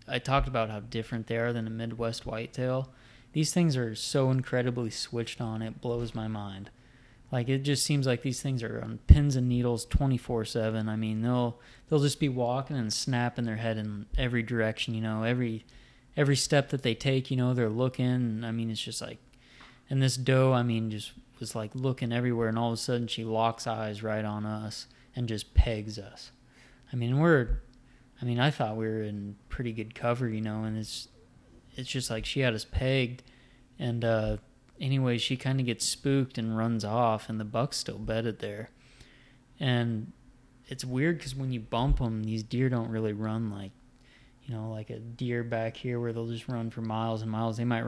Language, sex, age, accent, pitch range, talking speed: English, male, 20-39, American, 110-125 Hz, 205 wpm